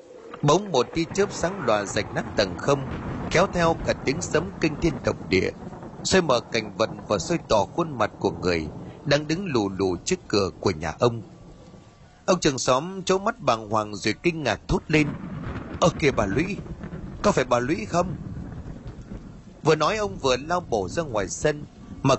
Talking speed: 190 wpm